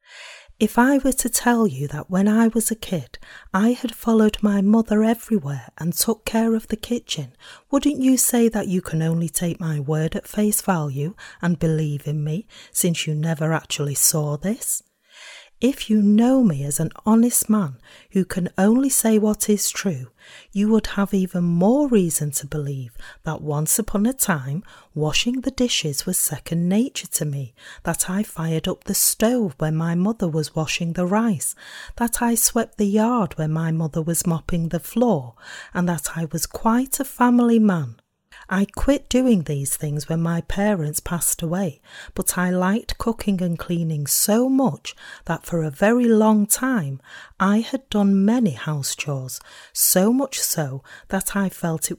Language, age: English, 40-59